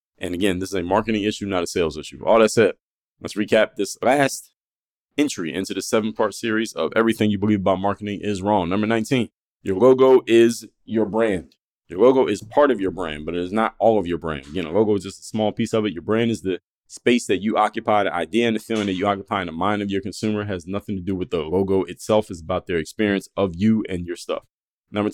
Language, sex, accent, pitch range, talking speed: English, male, American, 95-115 Hz, 245 wpm